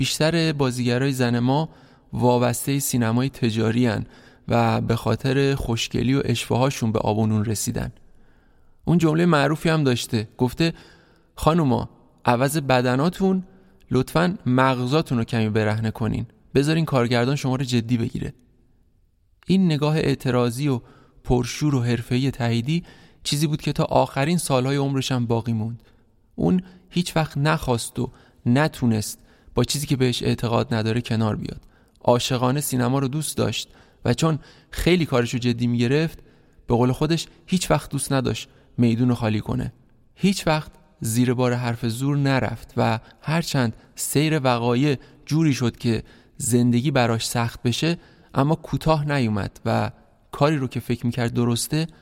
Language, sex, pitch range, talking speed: Persian, male, 120-145 Hz, 140 wpm